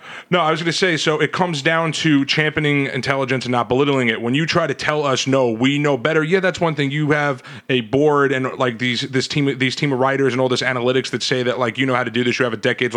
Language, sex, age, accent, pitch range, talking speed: English, male, 30-49, American, 125-150 Hz, 285 wpm